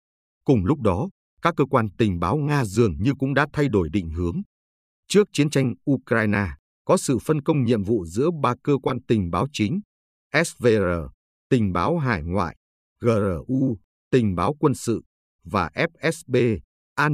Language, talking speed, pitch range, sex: Vietnamese, 165 wpm, 90-140 Hz, male